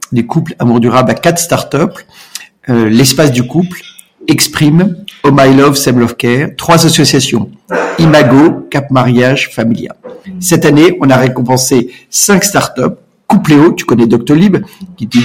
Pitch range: 120-165 Hz